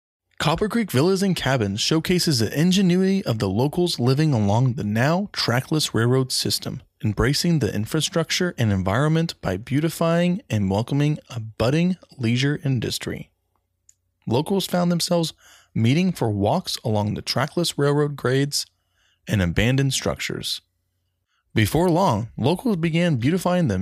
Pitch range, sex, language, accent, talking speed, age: 105-170 Hz, male, English, American, 130 wpm, 20-39